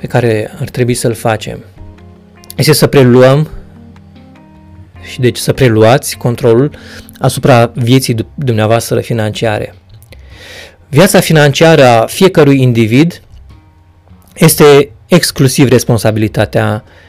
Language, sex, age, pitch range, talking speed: Romanian, male, 20-39, 100-140 Hz, 90 wpm